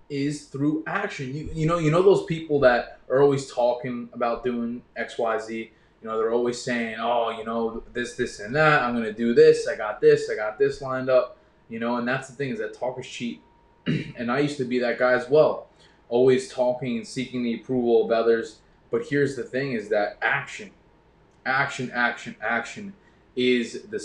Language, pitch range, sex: English, 120-175 Hz, male